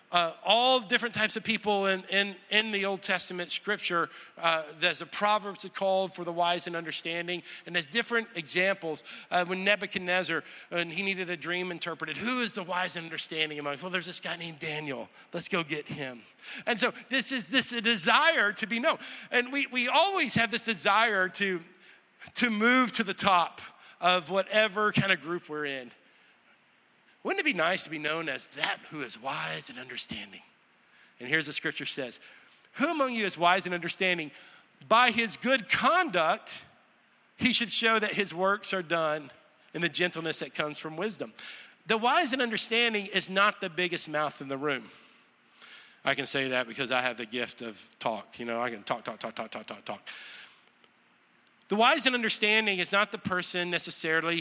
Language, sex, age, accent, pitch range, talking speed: English, male, 40-59, American, 165-220 Hz, 190 wpm